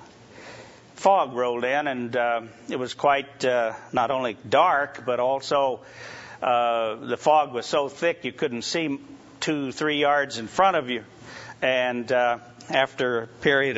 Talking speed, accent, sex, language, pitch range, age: 150 wpm, American, male, English, 115-140 Hz, 50-69